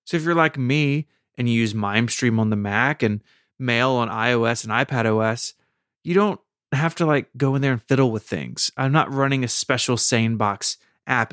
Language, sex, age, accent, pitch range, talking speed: English, male, 30-49, American, 115-150 Hz, 195 wpm